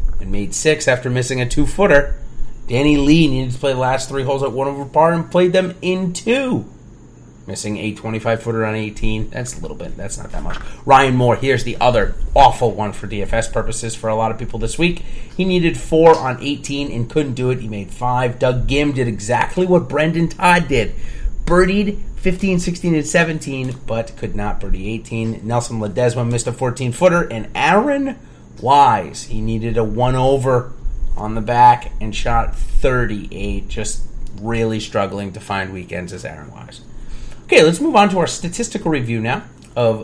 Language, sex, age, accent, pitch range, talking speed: English, male, 30-49, American, 110-145 Hz, 185 wpm